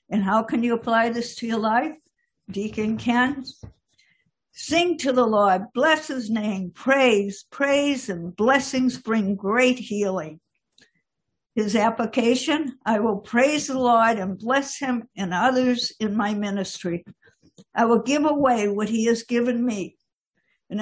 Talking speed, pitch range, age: 145 wpm, 210-255 Hz, 60-79